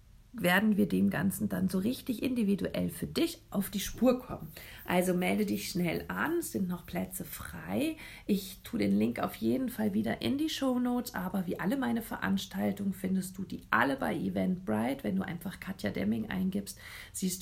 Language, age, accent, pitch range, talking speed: German, 40-59, German, 175-220 Hz, 185 wpm